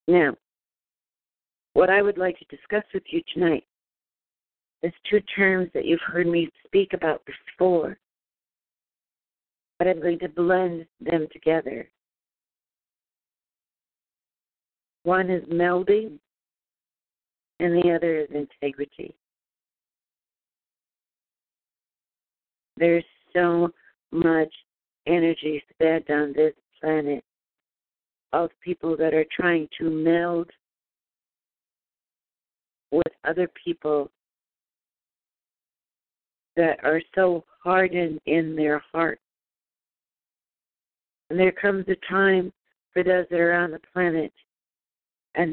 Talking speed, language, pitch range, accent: 95 wpm, English, 160-180 Hz, American